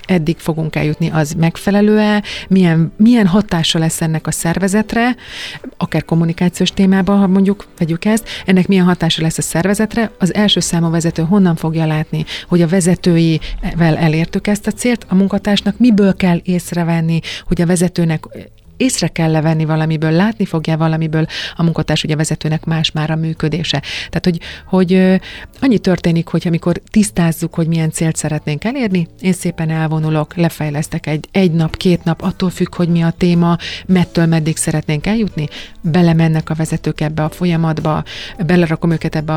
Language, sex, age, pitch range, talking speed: Hungarian, female, 30-49, 160-180 Hz, 155 wpm